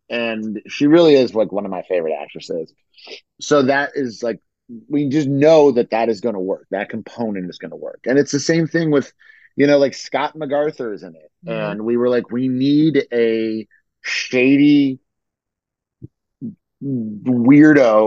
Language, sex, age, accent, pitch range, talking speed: English, male, 30-49, American, 110-140 Hz, 175 wpm